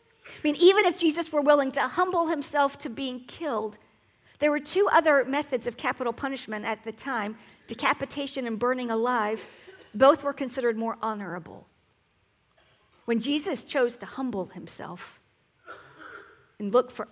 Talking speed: 145 wpm